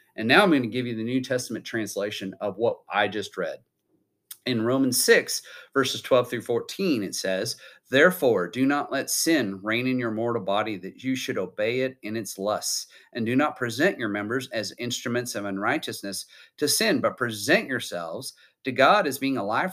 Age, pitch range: 40-59, 115-155 Hz